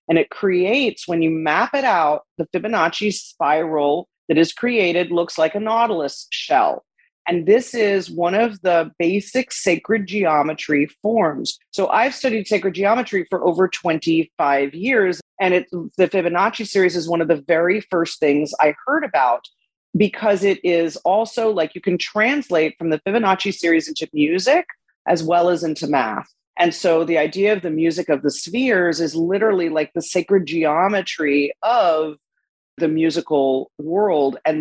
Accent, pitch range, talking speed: American, 160-205 Hz, 160 wpm